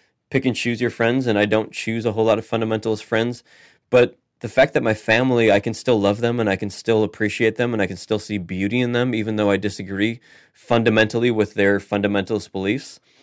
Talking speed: 220 wpm